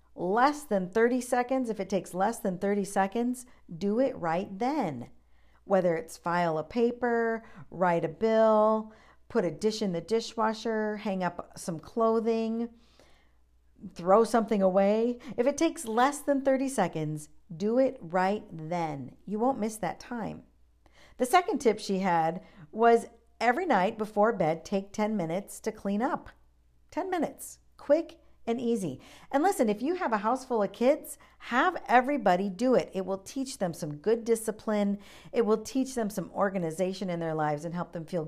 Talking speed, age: 170 wpm, 50-69